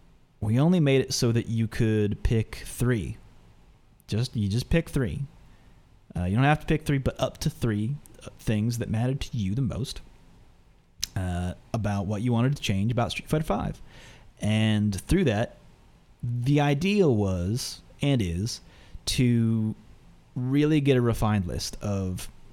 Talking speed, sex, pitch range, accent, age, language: 155 wpm, male, 100-135 Hz, American, 30-49, English